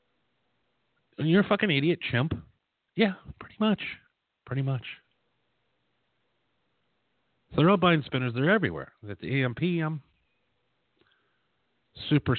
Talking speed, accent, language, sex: 105 wpm, American, English, male